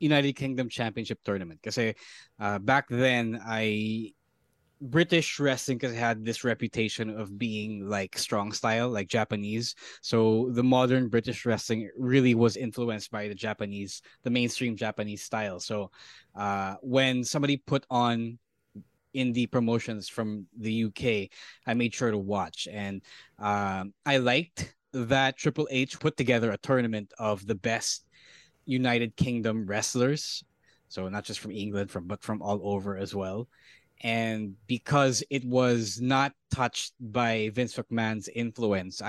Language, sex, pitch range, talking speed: English, male, 105-125 Hz, 145 wpm